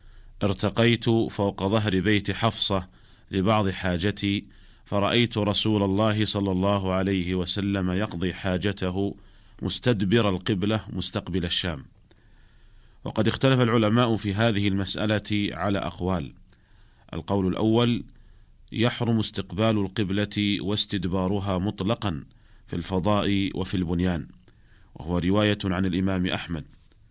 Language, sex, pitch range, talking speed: Arabic, male, 95-105 Hz, 95 wpm